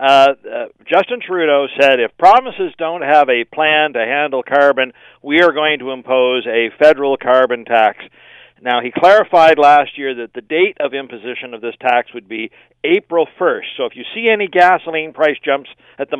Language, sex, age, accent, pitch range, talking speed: English, male, 50-69, American, 130-170 Hz, 185 wpm